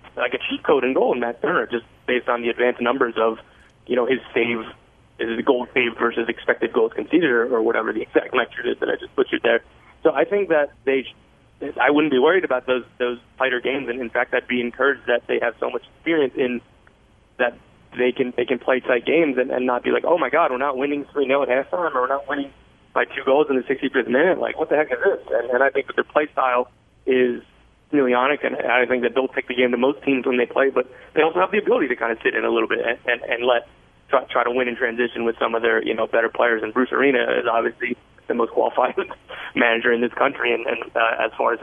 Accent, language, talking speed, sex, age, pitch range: American, English, 260 wpm, male, 20-39, 120-145 Hz